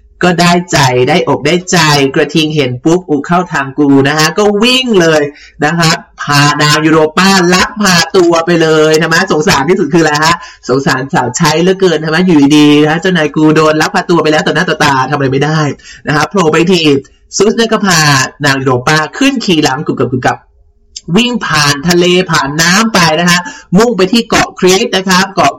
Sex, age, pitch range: male, 20-39, 145-180 Hz